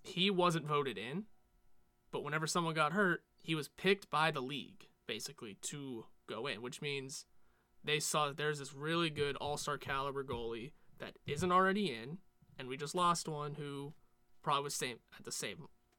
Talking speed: 175 wpm